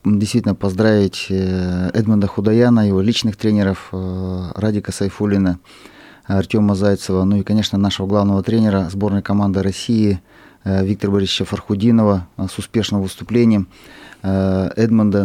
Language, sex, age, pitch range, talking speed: Russian, male, 30-49, 95-110 Hz, 105 wpm